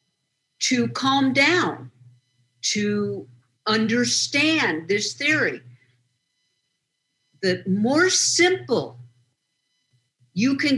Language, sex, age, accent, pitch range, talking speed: English, female, 50-69, American, 125-205 Hz, 65 wpm